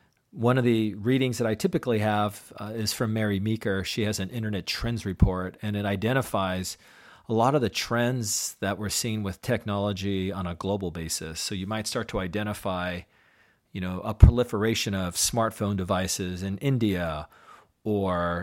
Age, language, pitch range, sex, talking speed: 40-59, English, 95-120 Hz, male, 170 wpm